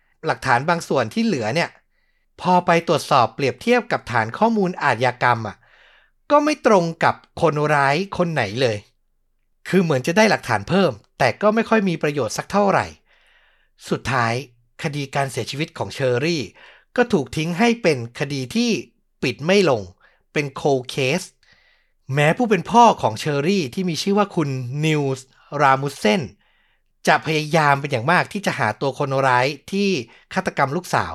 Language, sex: Thai, male